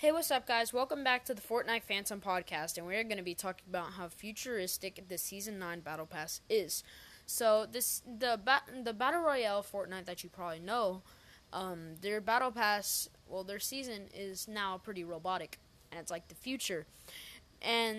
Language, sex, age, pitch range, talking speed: English, female, 10-29, 180-225 Hz, 180 wpm